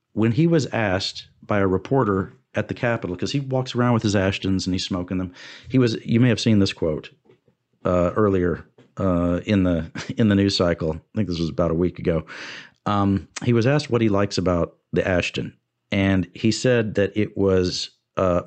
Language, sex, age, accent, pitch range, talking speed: English, male, 40-59, American, 95-120 Hz, 210 wpm